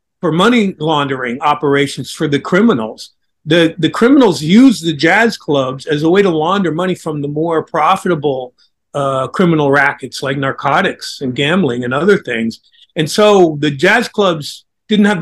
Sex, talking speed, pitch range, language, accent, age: male, 160 wpm, 145-195 Hz, English, American, 50-69